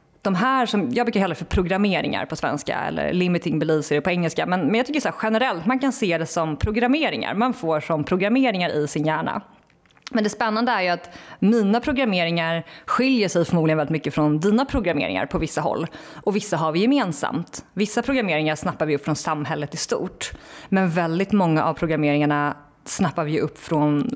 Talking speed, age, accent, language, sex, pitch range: 190 wpm, 30-49, native, Swedish, female, 155-220 Hz